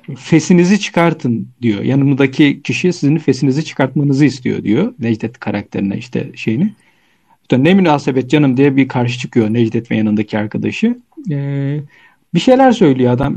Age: 40-59